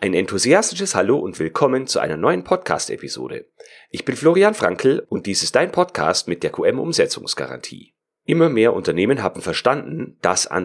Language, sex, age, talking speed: German, male, 40-59, 170 wpm